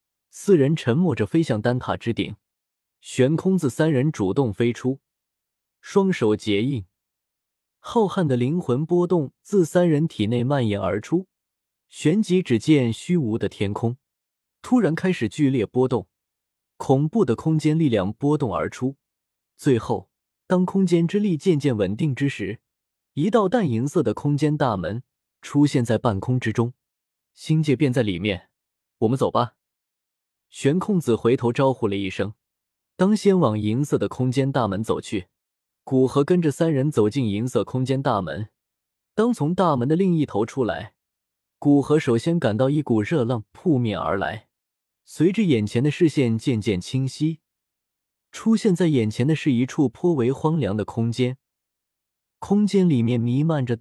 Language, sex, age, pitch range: Chinese, male, 20-39, 110-155 Hz